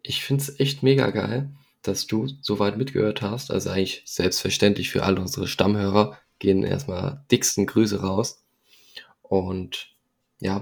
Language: German